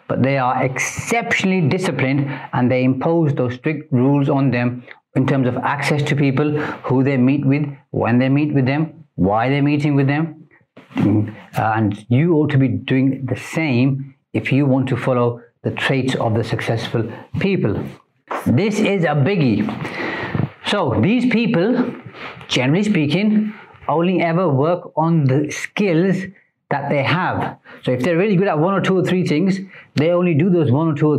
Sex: male